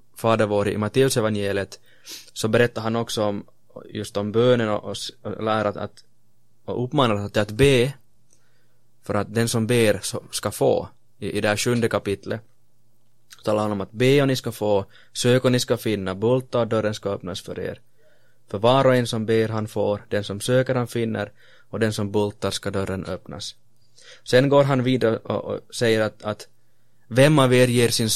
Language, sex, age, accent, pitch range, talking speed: Swedish, male, 20-39, Finnish, 105-125 Hz, 190 wpm